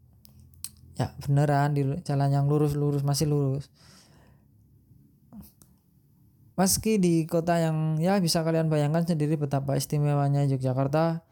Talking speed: 105 wpm